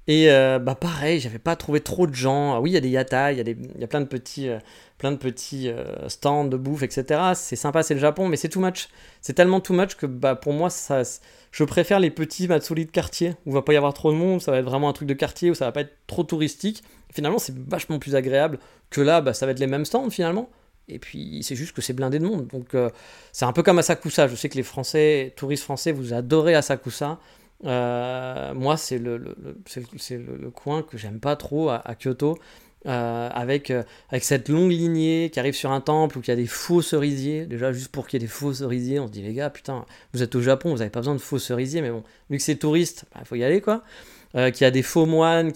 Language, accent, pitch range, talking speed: French, French, 130-155 Hz, 275 wpm